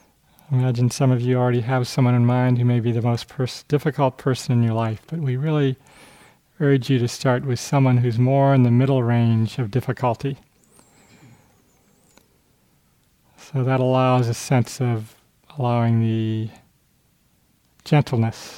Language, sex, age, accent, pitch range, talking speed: English, male, 40-59, American, 120-140 Hz, 150 wpm